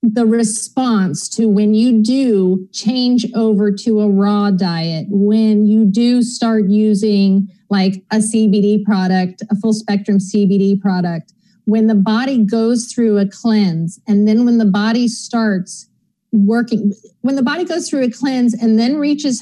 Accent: American